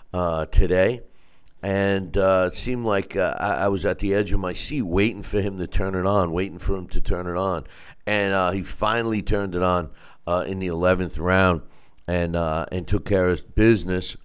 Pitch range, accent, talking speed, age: 85-100 Hz, American, 210 wpm, 50-69